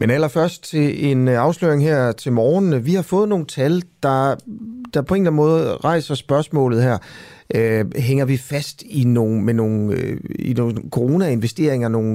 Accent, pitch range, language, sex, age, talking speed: native, 110-145 Hz, Danish, male, 30-49, 170 wpm